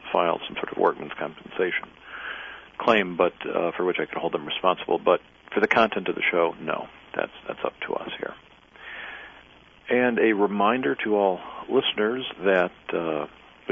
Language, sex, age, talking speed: English, male, 50-69, 165 wpm